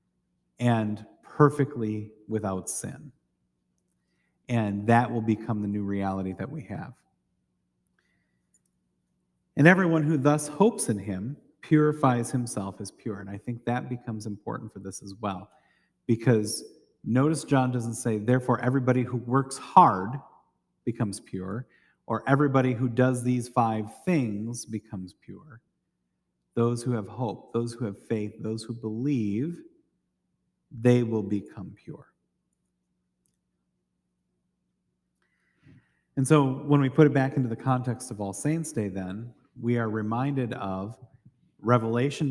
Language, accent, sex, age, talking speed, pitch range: English, American, male, 40-59, 130 wpm, 100-130 Hz